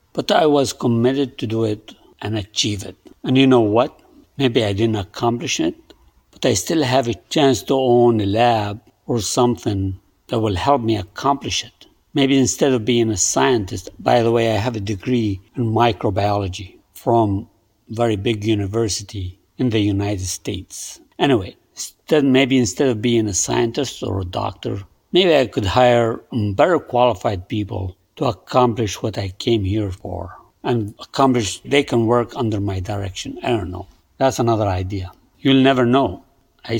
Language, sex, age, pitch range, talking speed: English, male, 60-79, 105-130 Hz, 170 wpm